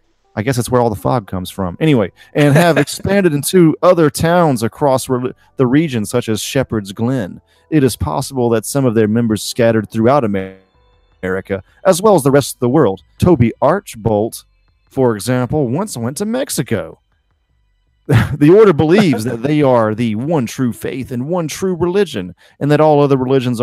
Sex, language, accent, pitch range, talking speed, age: male, English, American, 110-140 Hz, 175 wpm, 30-49